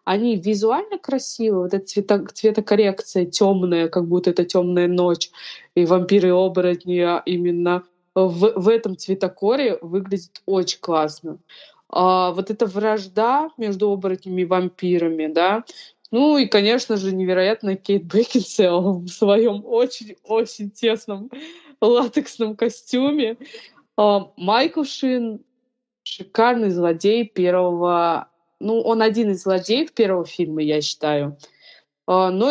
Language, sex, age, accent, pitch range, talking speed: Russian, female, 20-39, native, 180-230 Hz, 115 wpm